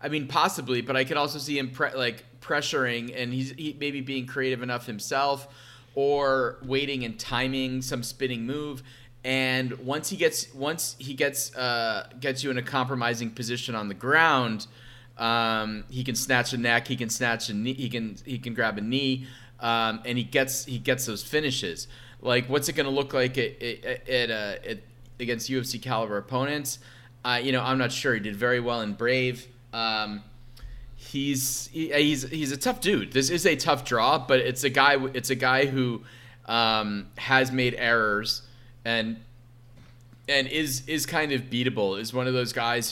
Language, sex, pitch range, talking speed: English, male, 120-130 Hz, 190 wpm